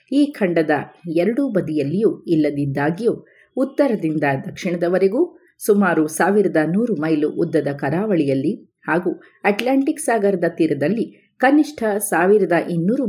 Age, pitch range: 30-49, 160-245 Hz